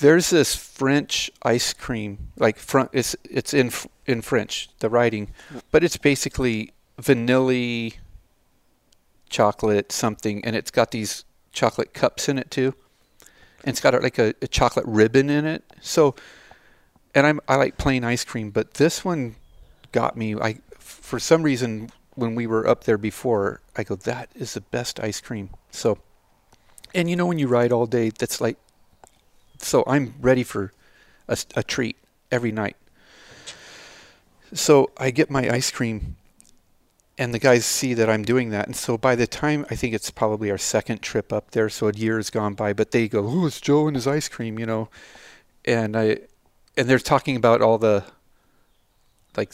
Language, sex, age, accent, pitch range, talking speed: English, male, 40-59, American, 105-130 Hz, 175 wpm